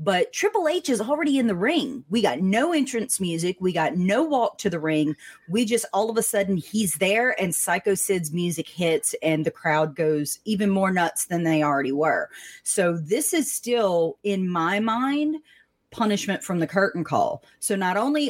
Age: 30-49